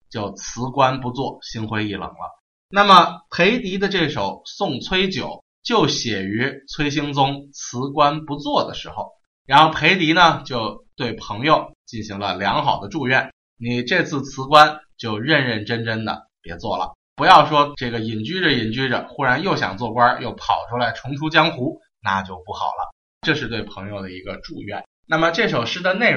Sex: male